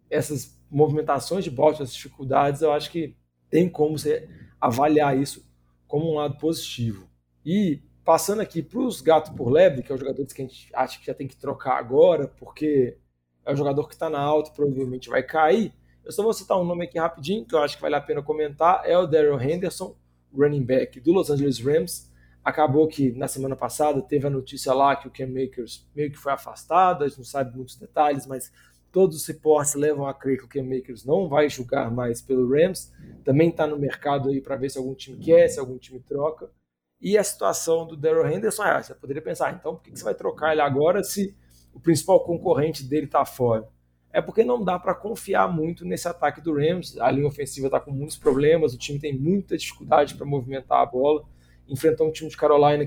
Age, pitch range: 20-39, 130-160 Hz